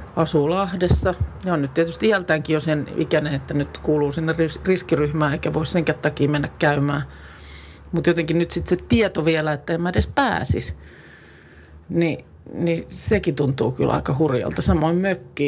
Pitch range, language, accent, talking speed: 130-175 Hz, Finnish, native, 165 wpm